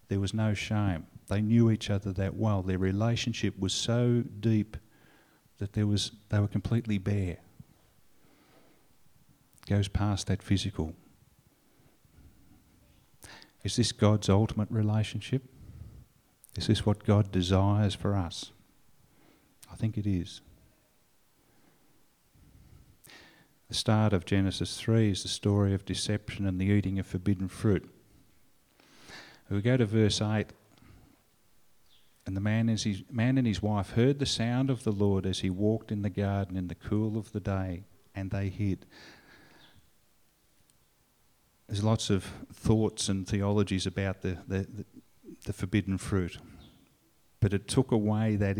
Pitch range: 95-110 Hz